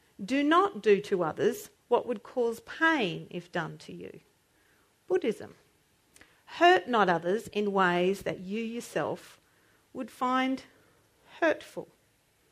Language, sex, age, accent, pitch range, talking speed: English, female, 40-59, Australian, 205-290 Hz, 120 wpm